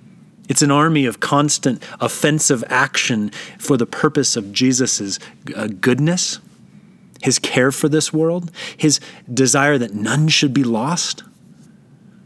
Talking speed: 120 wpm